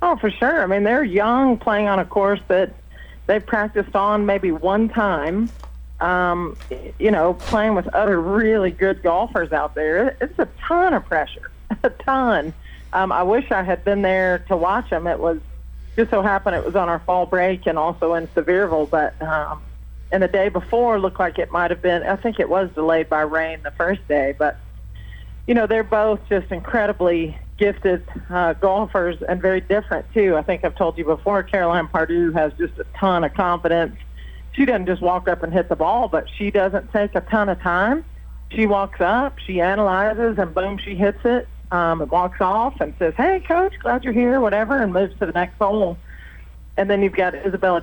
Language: English